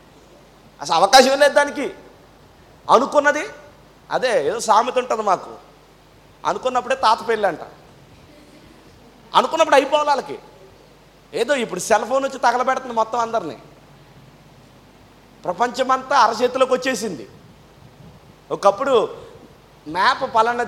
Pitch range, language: 225-275 Hz, Telugu